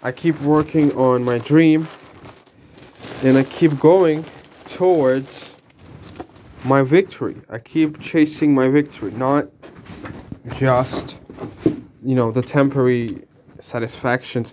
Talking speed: 105 wpm